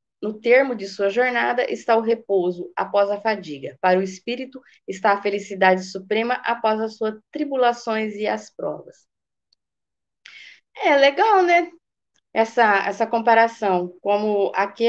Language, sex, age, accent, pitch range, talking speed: Portuguese, female, 20-39, Brazilian, 205-250 Hz, 135 wpm